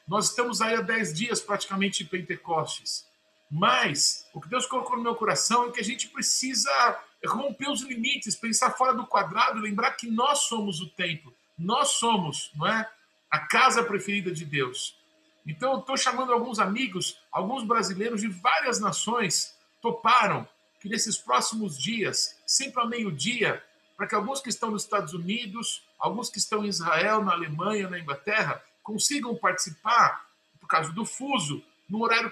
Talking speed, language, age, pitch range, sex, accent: 165 wpm, Portuguese, 50-69, 200-250 Hz, male, Brazilian